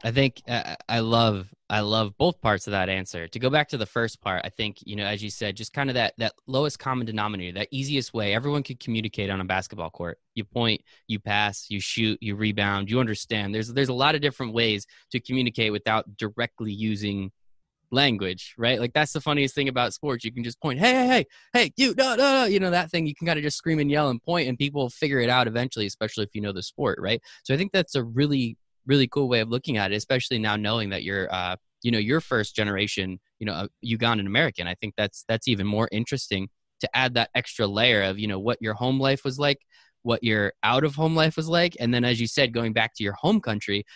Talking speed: 245 wpm